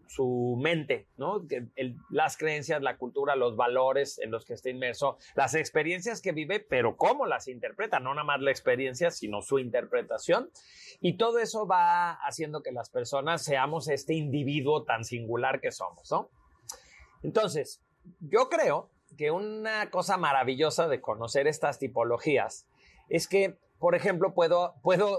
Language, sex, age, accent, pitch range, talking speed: Spanish, male, 40-59, Mexican, 150-230 Hz, 145 wpm